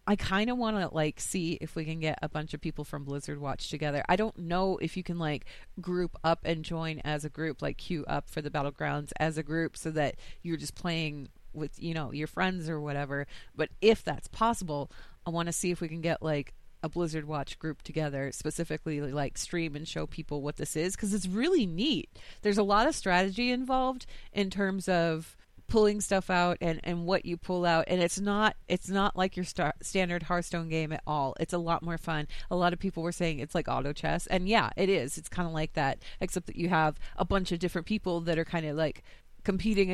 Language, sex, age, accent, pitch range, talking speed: English, female, 30-49, American, 150-180 Hz, 230 wpm